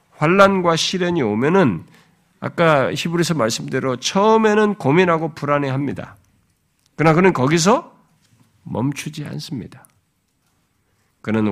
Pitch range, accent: 105-160 Hz, native